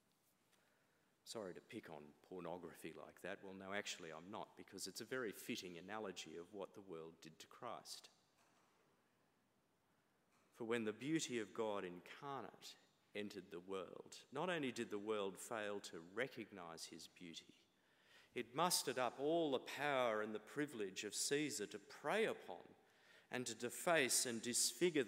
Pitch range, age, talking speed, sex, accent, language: 100-130 Hz, 50-69, 155 wpm, male, Australian, English